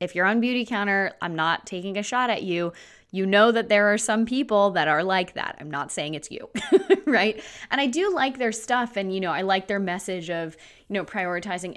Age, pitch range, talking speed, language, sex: 20-39, 170-215 Hz, 235 wpm, English, female